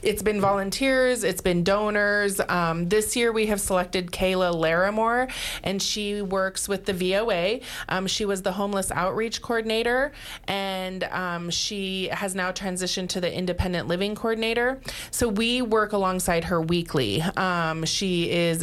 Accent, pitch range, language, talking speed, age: American, 165-200 Hz, English, 150 wpm, 30-49